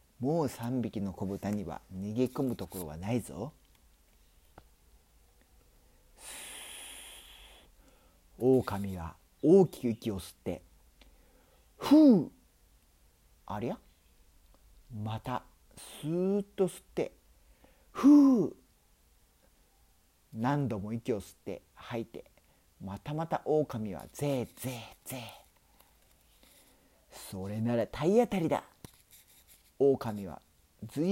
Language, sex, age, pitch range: Spanish, male, 50-69, 80-130 Hz